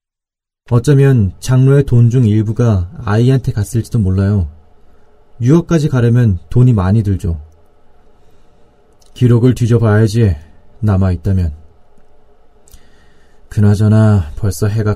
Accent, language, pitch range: native, Korean, 95-120 Hz